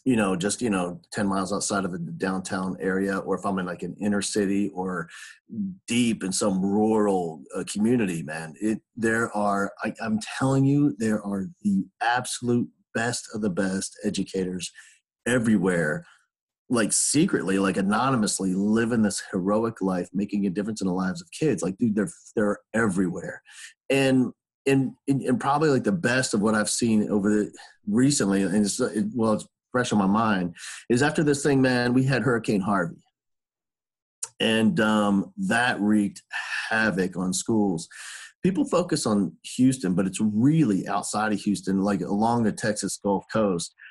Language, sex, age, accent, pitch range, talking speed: English, male, 40-59, American, 100-125 Hz, 165 wpm